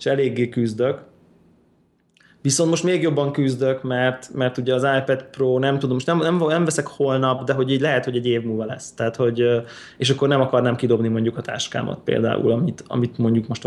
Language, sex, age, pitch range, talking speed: Hungarian, male, 20-39, 115-135 Hz, 200 wpm